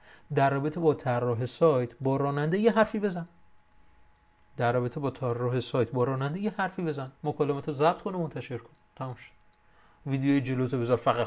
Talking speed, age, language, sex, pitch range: 180 wpm, 30-49, Persian, male, 120-155 Hz